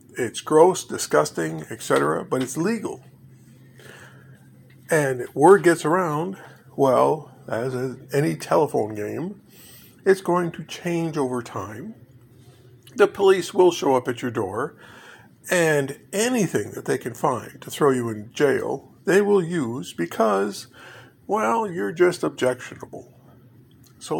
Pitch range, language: 125-160 Hz, English